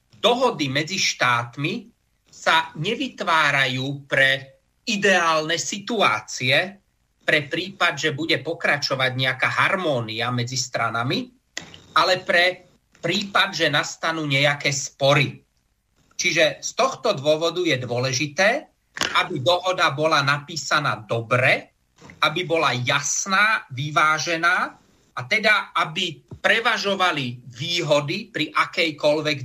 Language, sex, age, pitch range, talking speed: Slovak, male, 30-49, 130-175 Hz, 95 wpm